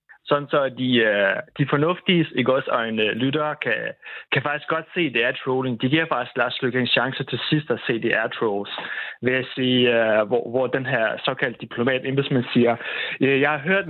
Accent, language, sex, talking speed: native, Danish, male, 185 wpm